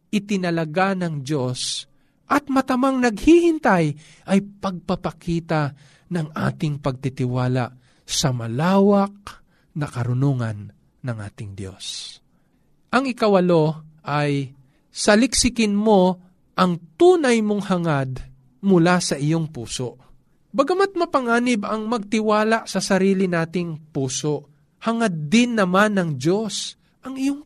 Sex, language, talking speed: male, Filipino, 100 wpm